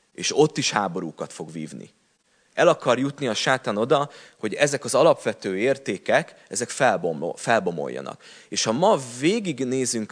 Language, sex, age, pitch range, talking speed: Hungarian, male, 30-49, 100-125 Hz, 130 wpm